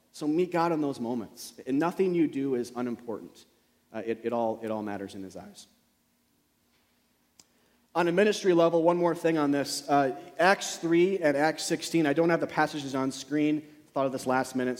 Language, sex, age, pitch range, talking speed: English, male, 30-49, 130-175 Hz, 205 wpm